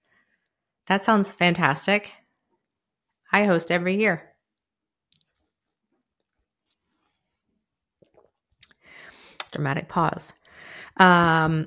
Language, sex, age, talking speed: English, female, 30-49, 50 wpm